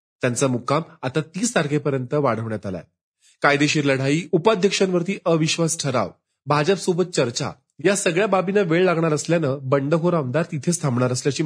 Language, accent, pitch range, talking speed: Marathi, native, 135-175 Hz, 85 wpm